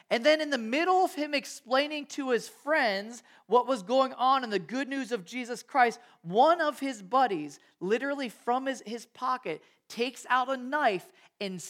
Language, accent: English, American